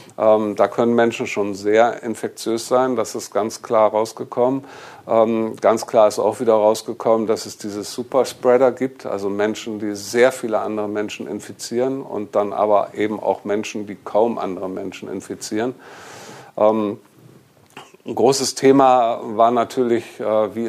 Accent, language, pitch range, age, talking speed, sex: German, German, 105-120 Hz, 50-69, 140 wpm, male